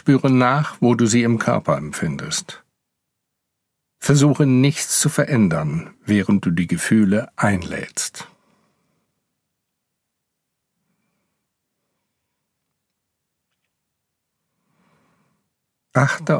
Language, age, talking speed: German, 50-69, 65 wpm